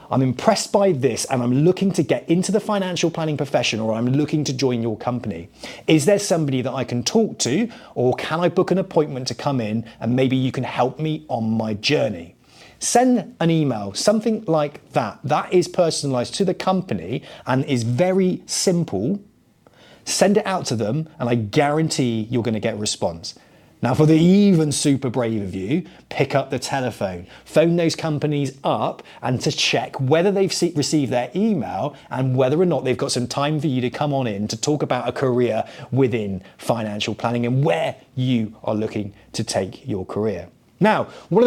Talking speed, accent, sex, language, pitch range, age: 190 wpm, British, male, English, 120-175 Hz, 30-49